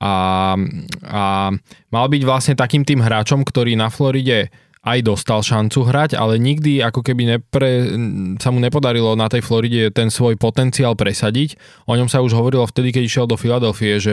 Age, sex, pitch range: 20-39, male, 105-125 Hz